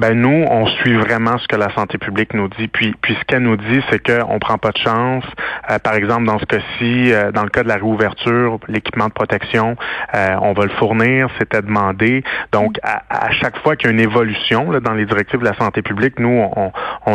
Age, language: 30-49, French